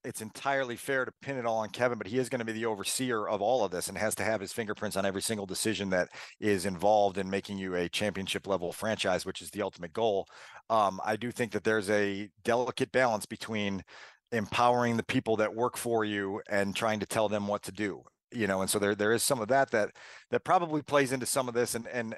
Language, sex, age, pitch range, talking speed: English, male, 40-59, 105-125 Hz, 245 wpm